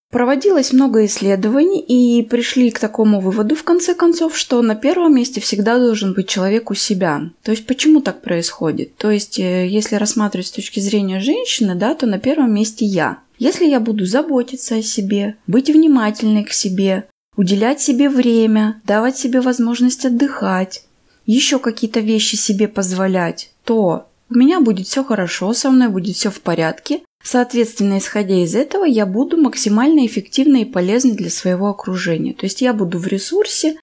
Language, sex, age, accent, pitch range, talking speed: Russian, female, 20-39, native, 190-255 Hz, 165 wpm